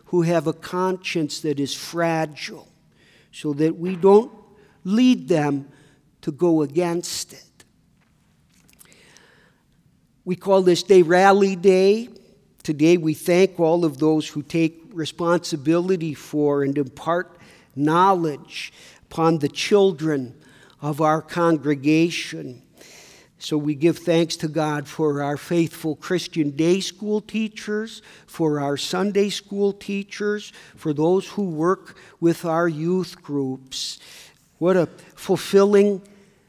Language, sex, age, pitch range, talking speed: English, male, 50-69, 155-195 Hz, 115 wpm